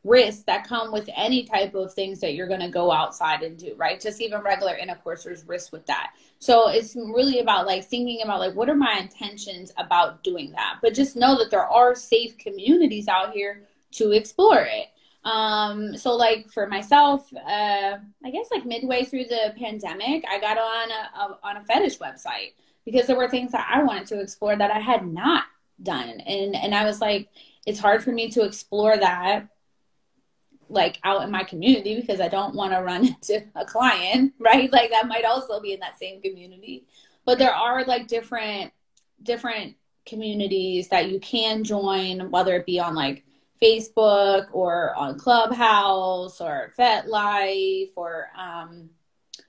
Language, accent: English, American